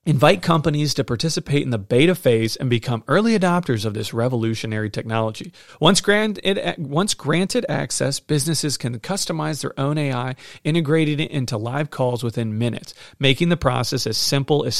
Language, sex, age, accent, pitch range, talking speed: English, male, 40-59, American, 115-145 Hz, 160 wpm